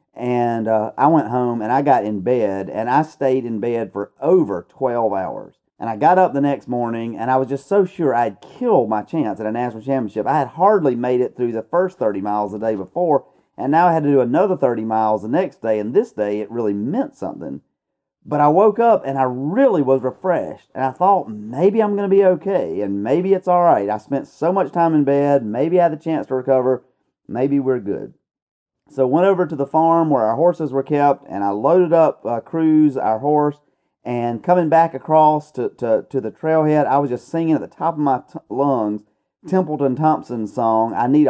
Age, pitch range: 40-59, 120-160 Hz